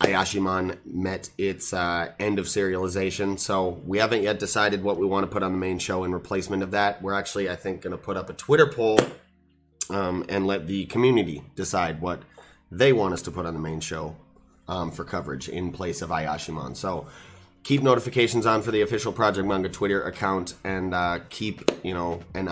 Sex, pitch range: male, 90-100 Hz